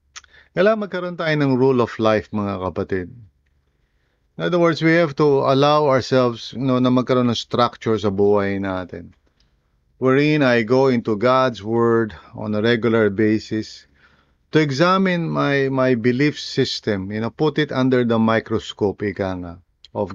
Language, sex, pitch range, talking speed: English, male, 95-135 Hz, 145 wpm